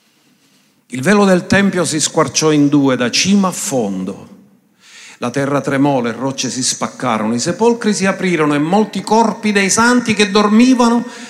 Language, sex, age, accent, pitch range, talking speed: Italian, male, 50-69, native, 145-225 Hz, 160 wpm